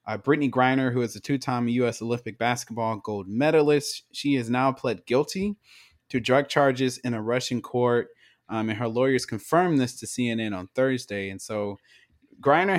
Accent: American